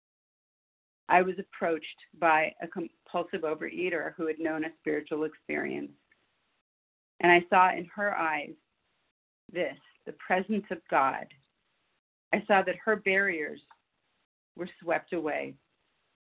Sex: female